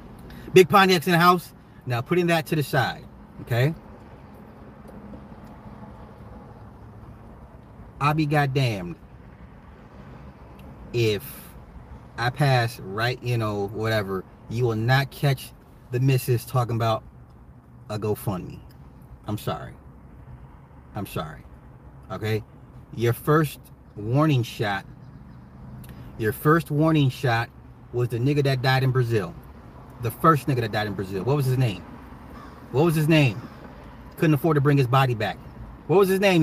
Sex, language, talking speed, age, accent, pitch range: male, English, 130 wpm, 30-49, American, 115-160 Hz